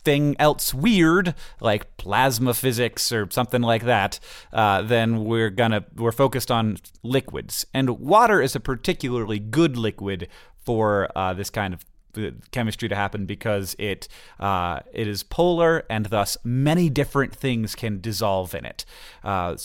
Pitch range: 105-130 Hz